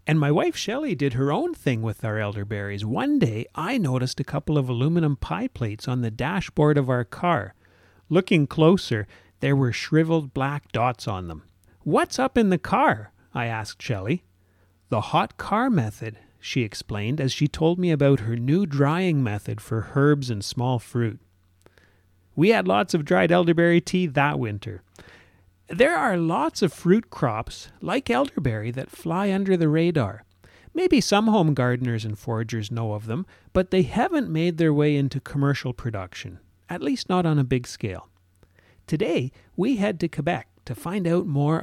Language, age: English, 40-59